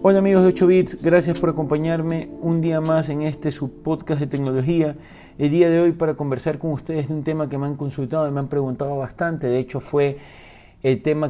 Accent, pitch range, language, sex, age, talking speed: Argentinian, 120-150 Hz, Spanish, male, 30-49, 205 wpm